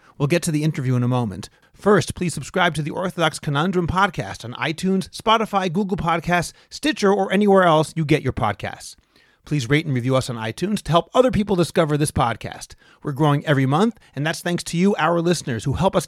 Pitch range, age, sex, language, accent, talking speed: 150-195 Hz, 30-49, male, English, American, 215 wpm